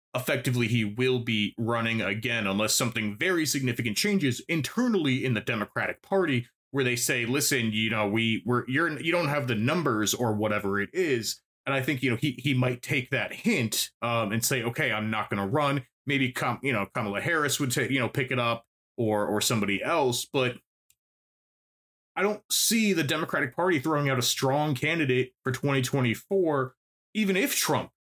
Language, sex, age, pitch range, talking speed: English, male, 30-49, 115-150 Hz, 185 wpm